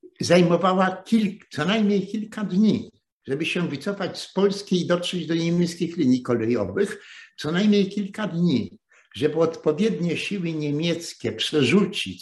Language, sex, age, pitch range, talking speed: Polish, male, 60-79, 145-195 Hz, 125 wpm